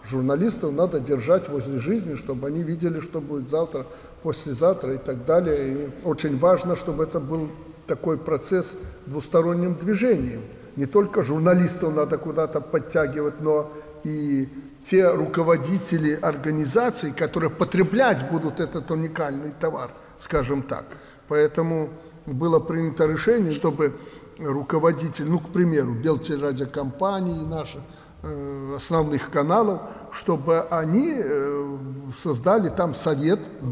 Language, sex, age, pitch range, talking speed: Russian, male, 60-79, 150-190 Hz, 115 wpm